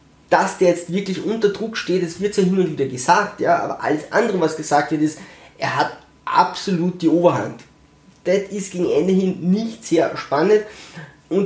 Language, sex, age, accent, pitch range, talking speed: German, male, 20-39, German, 145-185 Hz, 185 wpm